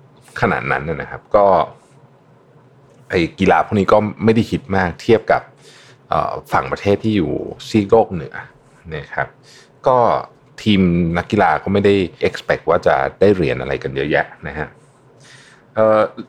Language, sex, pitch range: Thai, male, 90-135 Hz